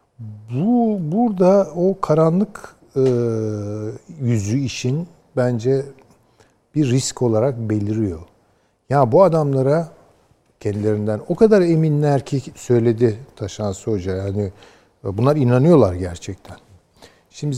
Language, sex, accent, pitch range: Turkish, male, native, 105-145 Hz